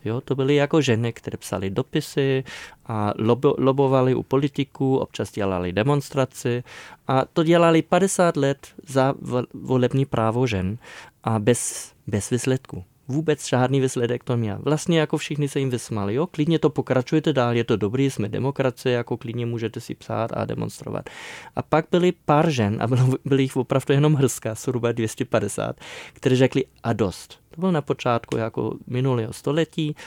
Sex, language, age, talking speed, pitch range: male, Czech, 20-39, 165 wpm, 115-145 Hz